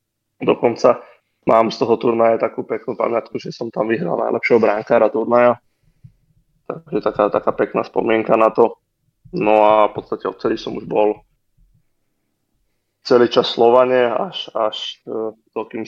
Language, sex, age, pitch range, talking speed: Slovak, male, 20-39, 105-115 Hz, 135 wpm